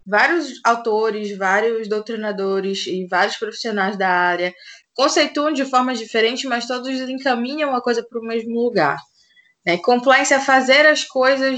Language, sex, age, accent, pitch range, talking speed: Portuguese, female, 20-39, Brazilian, 200-260 Hz, 145 wpm